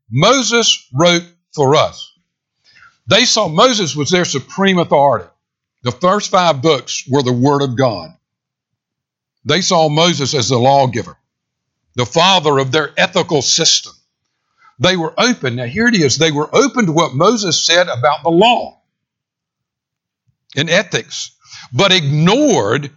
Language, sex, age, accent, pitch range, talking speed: English, male, 60-79, American, 140-190 Hz, 140 wpm